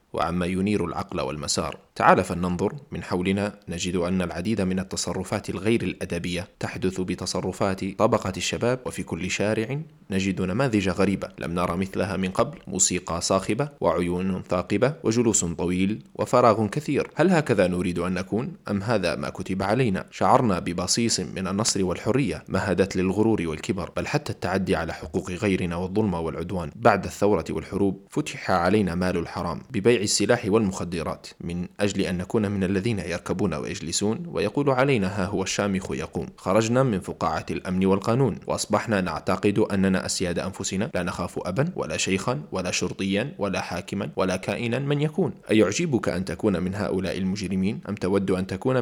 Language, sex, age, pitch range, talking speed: Arabic, male, 20-39, 90-110 Hz, 150 wpm